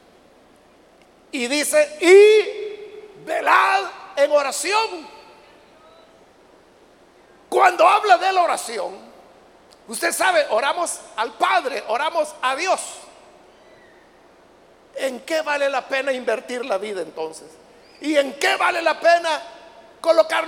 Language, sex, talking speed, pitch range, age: Spanish, male, 105 wpm, 270-335 Hz, 50-69